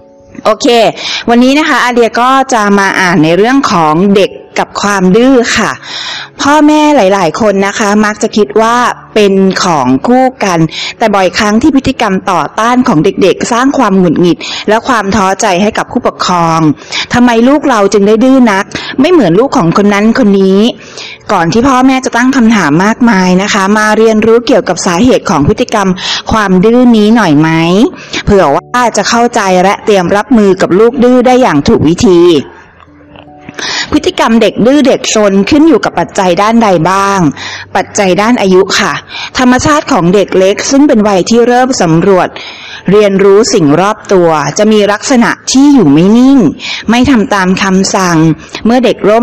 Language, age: Thai, 20-39